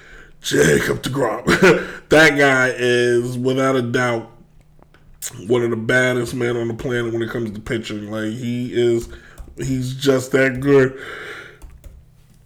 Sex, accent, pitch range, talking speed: male, American, 130-190 Hz, 135 wpm